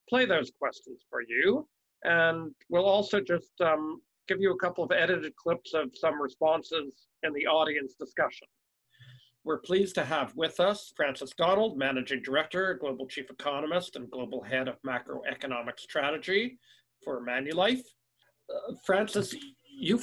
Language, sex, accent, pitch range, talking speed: English, male, American, 130-175 Hz, 145 wpm